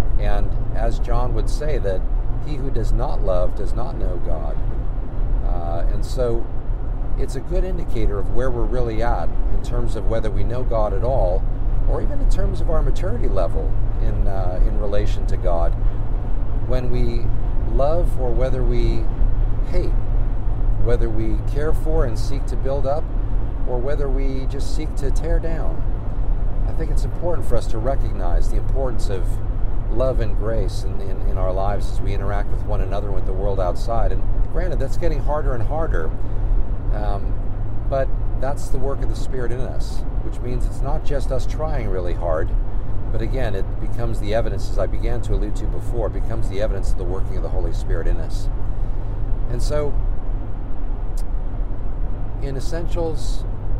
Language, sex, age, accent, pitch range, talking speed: English, male, 50-69, American, 100-115 Hz, 175 wpm